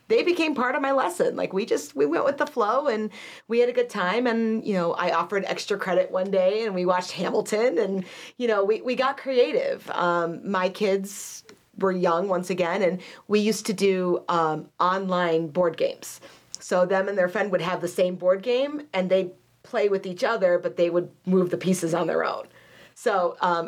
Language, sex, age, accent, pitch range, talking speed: English, female, 40-59, American, 175-225 Hz, 215 wpm